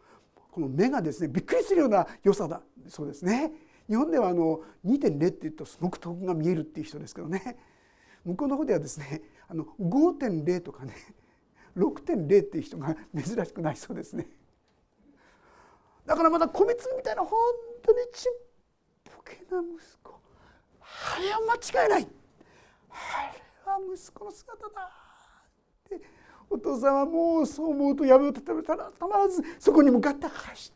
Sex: male